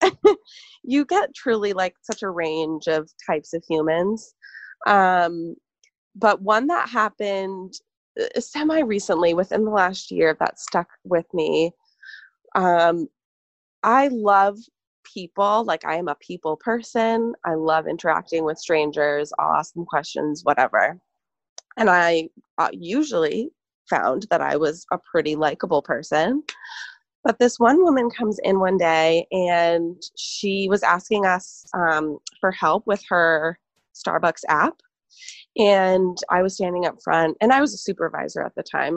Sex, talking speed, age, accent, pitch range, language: female, 140 wpm, 20-39, American, 165-230 Hz, English